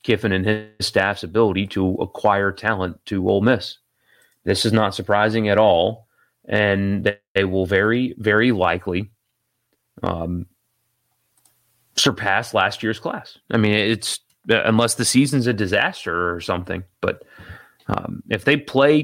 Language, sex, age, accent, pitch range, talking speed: English, male, 30-49, American, 95-120 Hz, 135 wpm